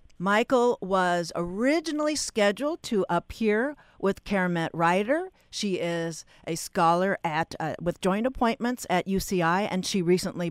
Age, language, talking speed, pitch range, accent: 50-69, English, 130 wpm, 170-220 Hz, American